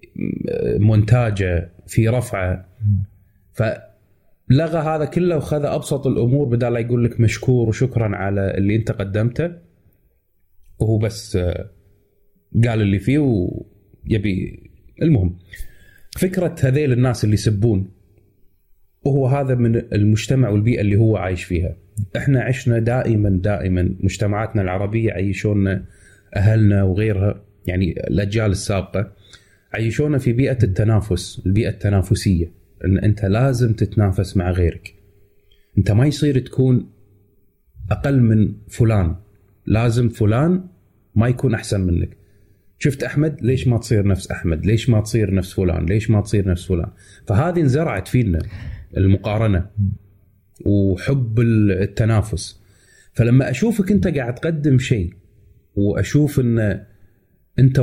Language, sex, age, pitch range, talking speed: Arabic, male, 30-49, 100-120 Hz, 110 wpm